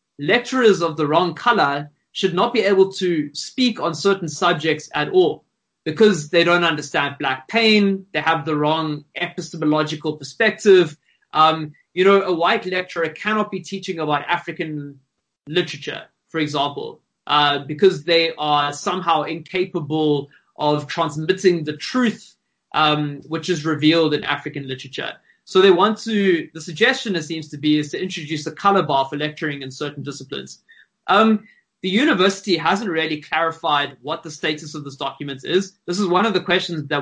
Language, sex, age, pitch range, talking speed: English, male, 20-39, 150-185 Hz, 160 wpm